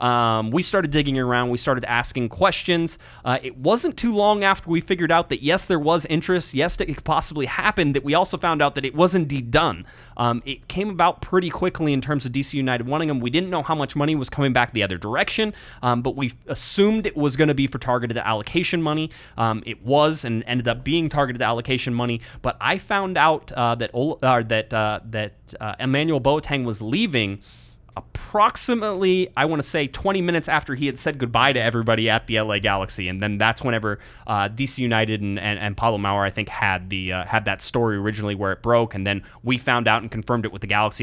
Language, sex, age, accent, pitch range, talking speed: English, male, 30-49, American, 110-155 Hz, 225 wpm